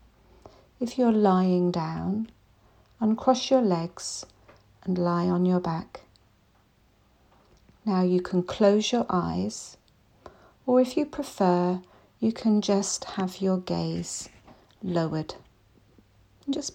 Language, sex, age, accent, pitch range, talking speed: English, female, 40-59, British, 165-215 Hz, 110 wpm